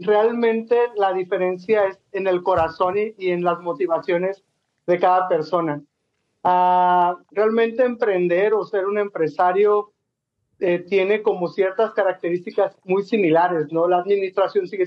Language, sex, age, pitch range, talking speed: Spanish, male, 40-59, 180-215 Hz, 135 wpm